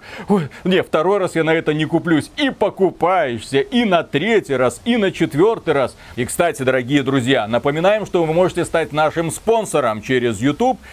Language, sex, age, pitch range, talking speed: Russian, male, 30-49, 125-170 Hz, 170 wpm